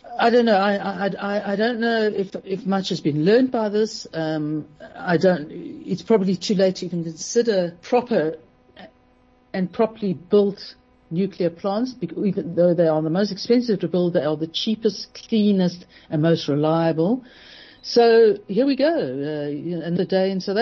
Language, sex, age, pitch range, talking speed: English, female, 60-79, 155-205 Hz, 175 wpm